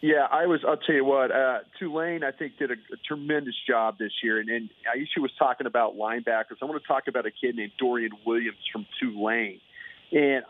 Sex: male